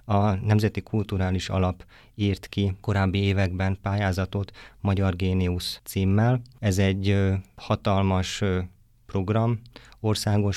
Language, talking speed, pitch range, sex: Hungarian, 95 wpm, 95-105 Hz, male